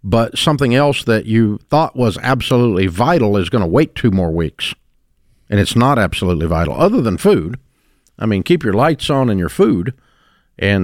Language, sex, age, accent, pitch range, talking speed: English, male, 50-69, American, 100-135 Hz, 190 wpm